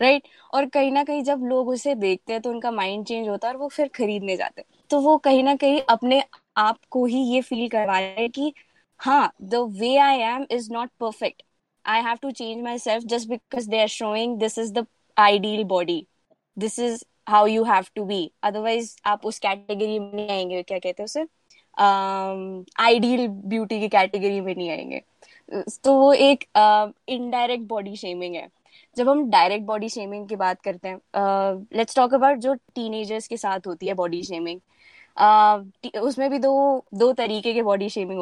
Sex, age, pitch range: female, 20-39, 205-255 Hz